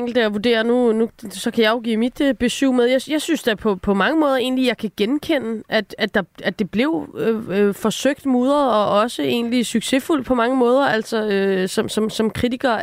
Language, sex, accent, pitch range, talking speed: Danish, female, native, 195-240 Hz, 220 wpm